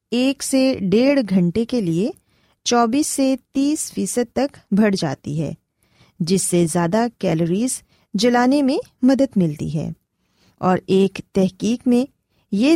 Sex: female